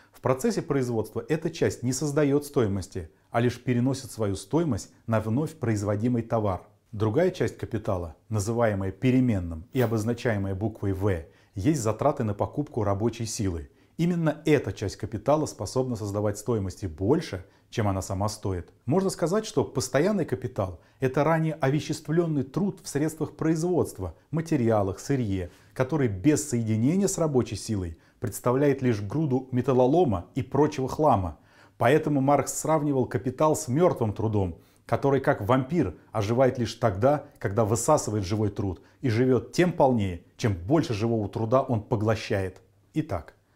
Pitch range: 105-140 Hz